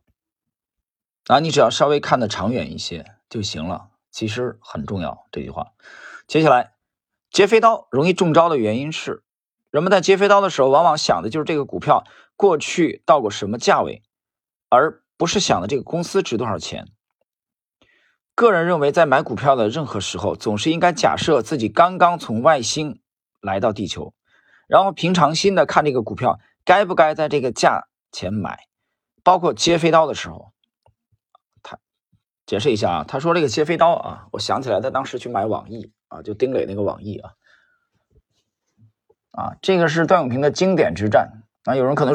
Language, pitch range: Chinese, 110-175 Hz